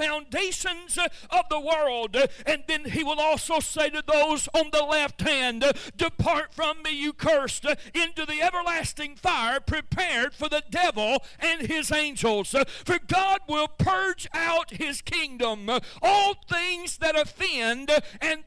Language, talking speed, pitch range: English, 145 wpm, 290-330 Hz